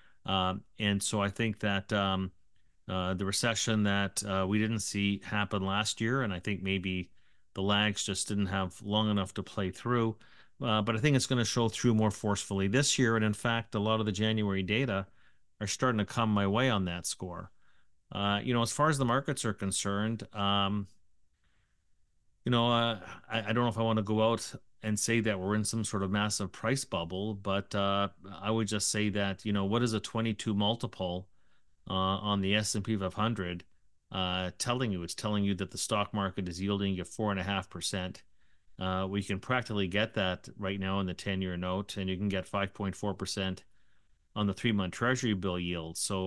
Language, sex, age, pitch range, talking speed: English, male, 40-59, 95-110 Hz, 210 wpm